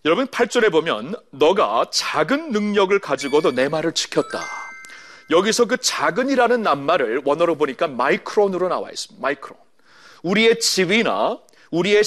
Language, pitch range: Korean, 175-245 Hz